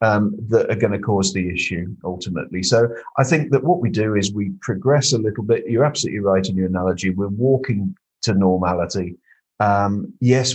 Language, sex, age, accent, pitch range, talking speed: English, male, 50-69, British, 95-125 Hz, 195 wpm